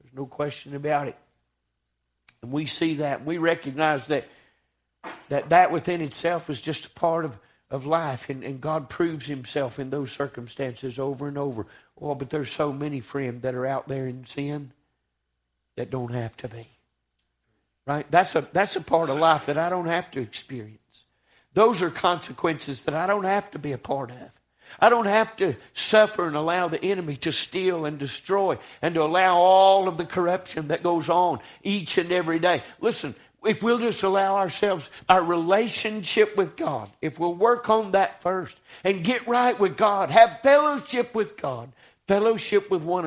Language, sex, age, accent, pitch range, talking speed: English, male, 60-79, American, 130-180 Hz, 185 wpm